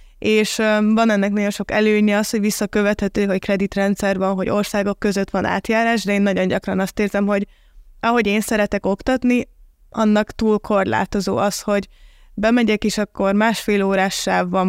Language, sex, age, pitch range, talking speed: Hungarian, female, 20-39, 195-215 Hz, 165 wpm